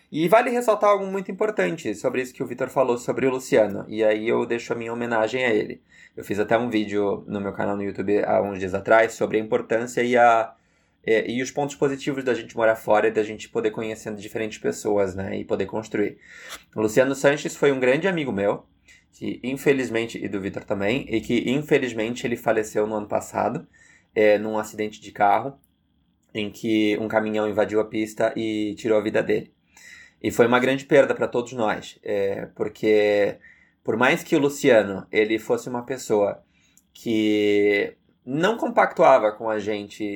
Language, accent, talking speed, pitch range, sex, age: Portuguese, Brazilian, 190 wpm, 105-145 Hz, male, 20-39